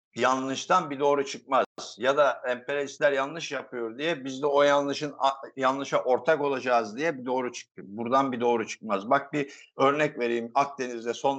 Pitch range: 120-155 Hz